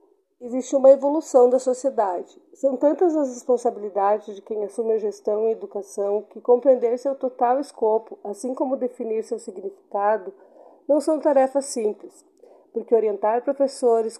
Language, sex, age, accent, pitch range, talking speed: Portuguese, female, 40-59, Brazilian, 215-255 Hz, 140 wpm